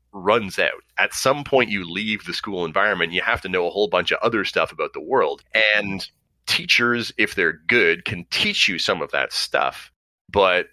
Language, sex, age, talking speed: English, male, 30-49, 200 wpm